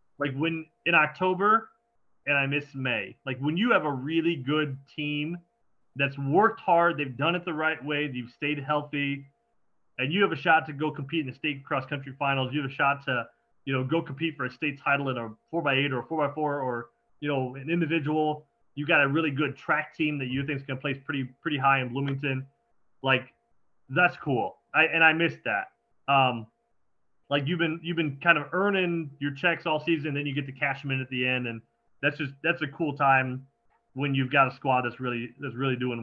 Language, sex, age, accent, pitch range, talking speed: English, male, 30-49, American, 130-160 Hz, 225 wpm